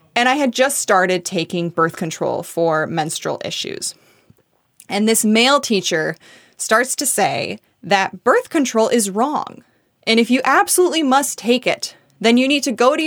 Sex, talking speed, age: female, 165 wpm, 20-39